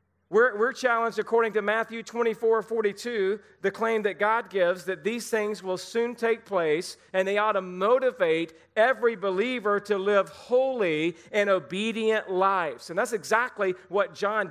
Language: English